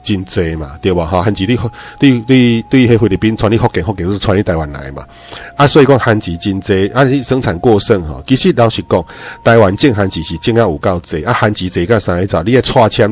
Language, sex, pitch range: Chinese, male, 95-120 Hz